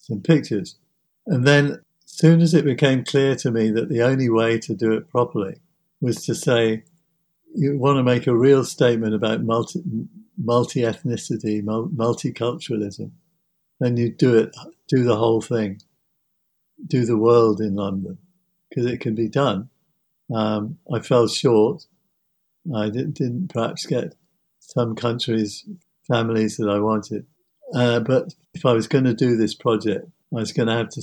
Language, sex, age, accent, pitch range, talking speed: English, male, 50-69, British, 110-150 Hz, 160 wpm